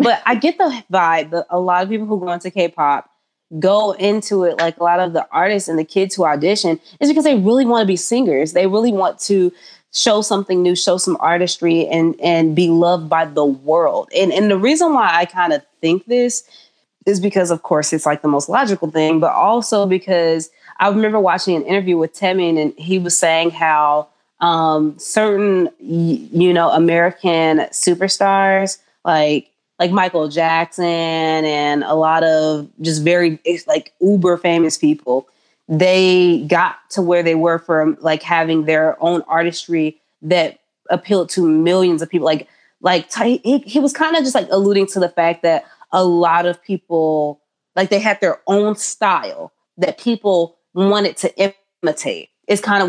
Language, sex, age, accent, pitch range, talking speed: English, female, 20-39, American, 165-200 Hz, 180 wpm